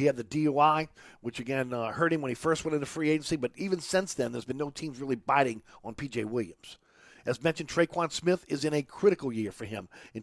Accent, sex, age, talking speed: American, male, 50-69, 240 wpm